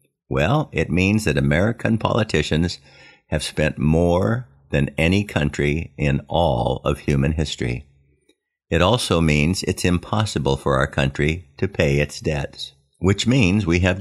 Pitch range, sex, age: 70-95 Hz, male, 50-69